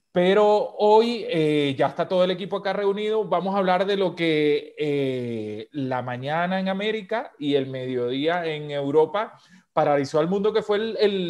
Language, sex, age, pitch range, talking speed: Spanish, male, 30-49, 145-190 Hz, 175 wpm